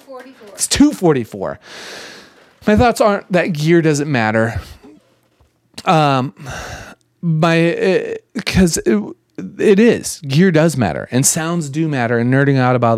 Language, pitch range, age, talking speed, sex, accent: English, 120-160 Hz, 30-49, 115 wpm, male, American